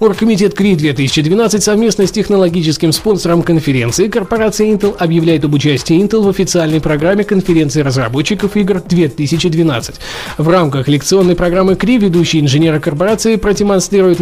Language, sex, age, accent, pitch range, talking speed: Russian, male, 20-39, native, 155-200 Hz, 120 wpm